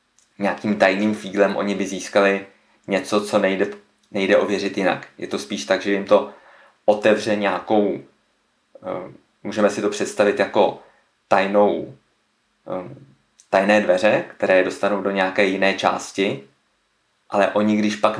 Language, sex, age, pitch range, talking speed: Czech, male, 20-39, 90-105 Hz, 130 wpm